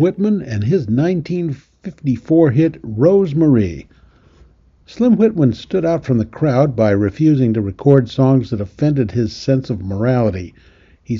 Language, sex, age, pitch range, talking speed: English, male, 60-79, 110-160 Hz, 135 wpm